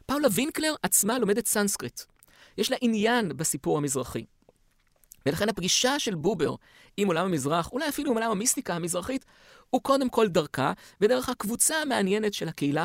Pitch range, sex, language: 140-210 Hz, male, Hebrew